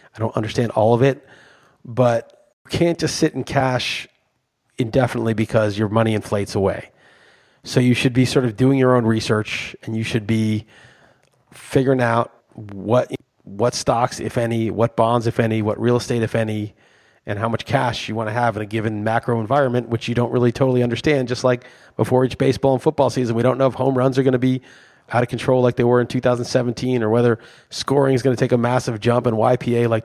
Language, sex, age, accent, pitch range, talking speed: English, male, 30-49, American, 110-130 Hz, 215 wpm